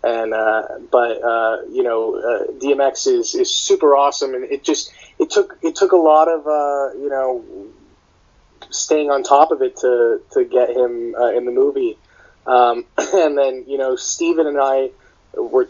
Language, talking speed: English, 180 wpm